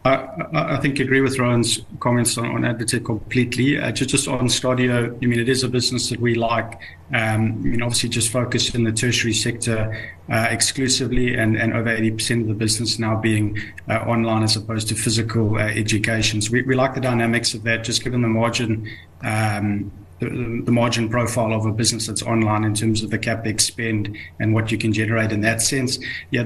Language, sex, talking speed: English, male, 210 wpm